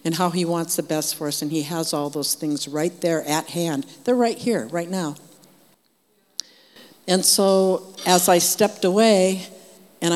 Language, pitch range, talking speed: English, 155-180 Hz, 175 wpm